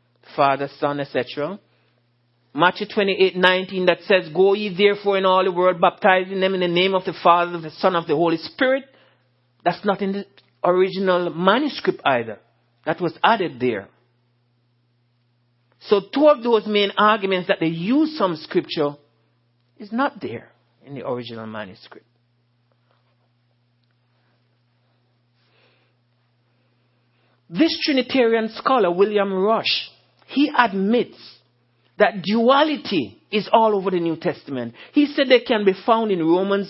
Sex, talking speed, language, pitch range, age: male, 130 wpm, English, 125-210 Hz, 60-79